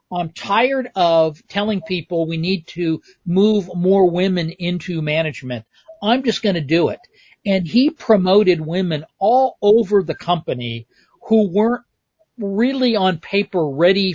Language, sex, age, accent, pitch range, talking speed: English, male, 40-59, American, 160-205 Hz, 140 wpm